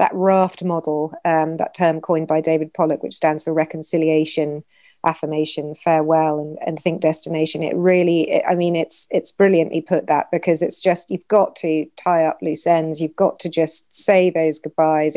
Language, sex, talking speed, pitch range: English, female, 185 wpm, 160-190 Hz